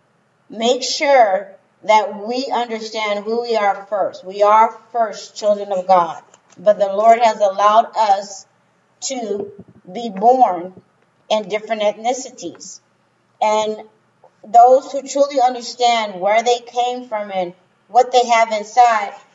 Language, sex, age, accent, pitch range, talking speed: English, female, 40-59, American, 200-235 Hz, 125 wpm